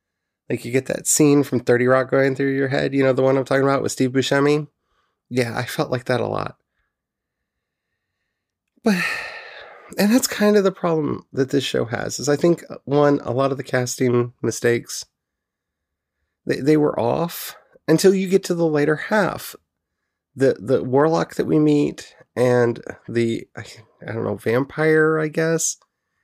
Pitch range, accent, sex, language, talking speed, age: 120-155 Hz, American, male, English, 175 wpm, 30-49